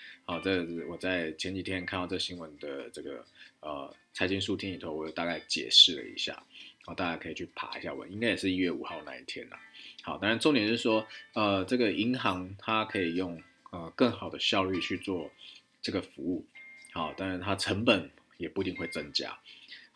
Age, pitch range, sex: 20-39, 90-120 Hz, male